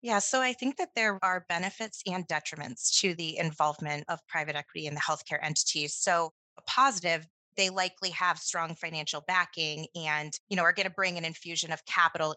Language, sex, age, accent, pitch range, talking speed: English, female, 30-49, American, 160-185 Hz, 195 wpm